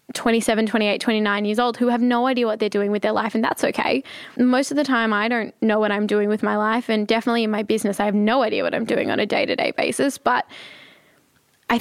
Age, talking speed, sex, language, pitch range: 10-29, 250 wpm, female, English, 210-230 Hz